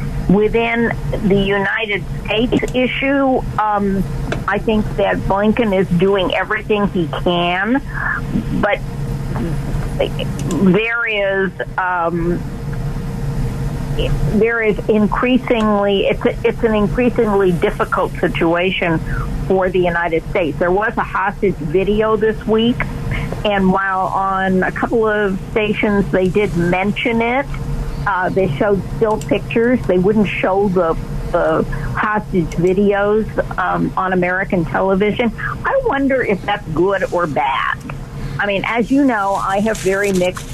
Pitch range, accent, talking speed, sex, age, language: 165-205 Hz, American, 120 wpm, female, 50-69, English